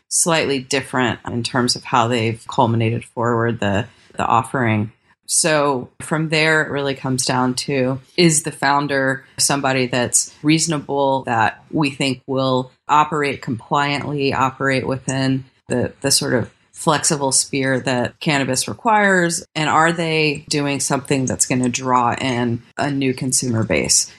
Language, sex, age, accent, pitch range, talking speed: English, female, 30-49, American, 120-145 Hz, 140 wpm